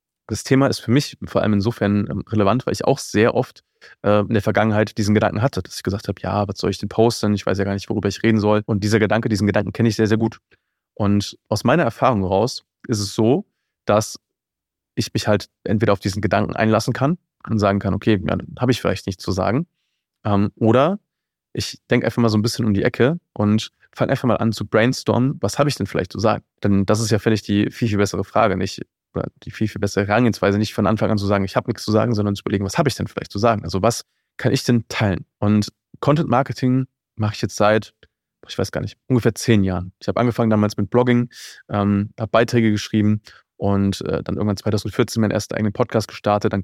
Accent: German